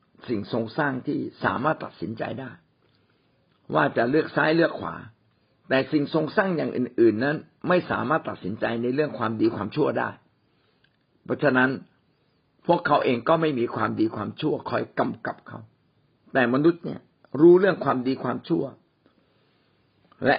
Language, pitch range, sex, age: Thai, 115-155 Hz, male, 60-79